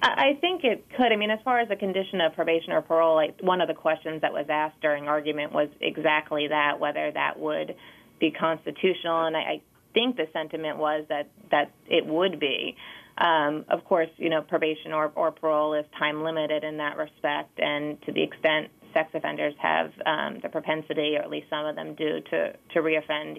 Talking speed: 200 wpm